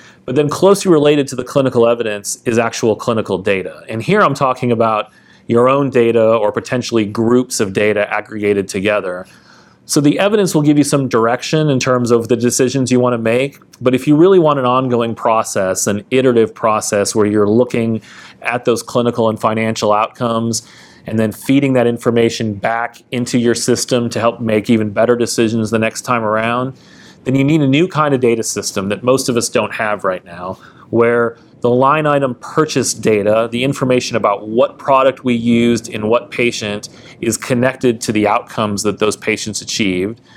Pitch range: 110-130 Hz